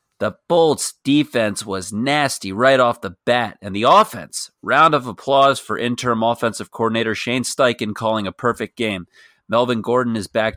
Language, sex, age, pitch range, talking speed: English, male, 30-49, 105-130 Hz, 165 wpm